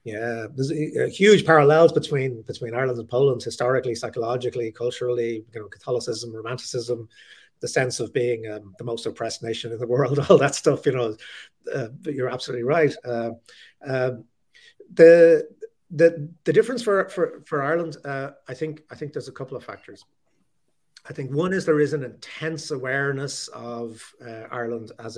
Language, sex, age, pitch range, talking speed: English, male, 30-49, 115-150 Hz, 175 wpm